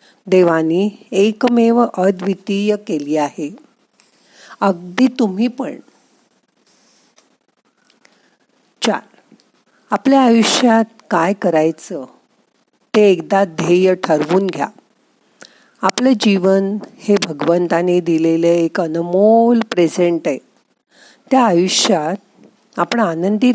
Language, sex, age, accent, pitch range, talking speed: Marathi, female, 50-69, native, 170-230 Hz, 65 wpm